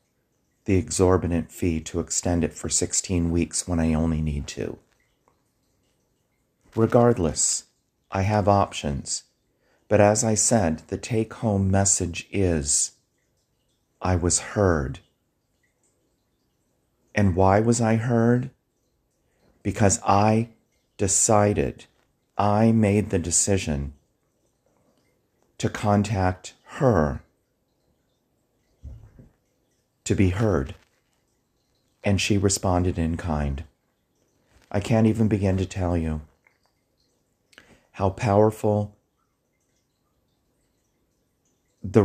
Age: 40-59